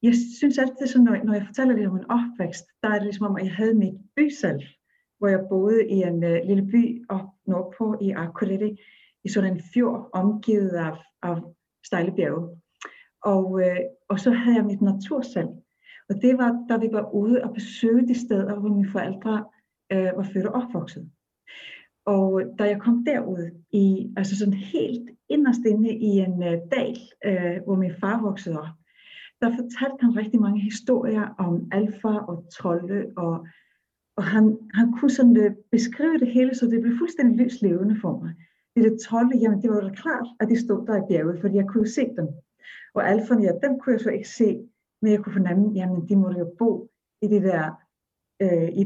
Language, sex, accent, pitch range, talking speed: Danish, female, native, 185-235 Hz, 190 wpm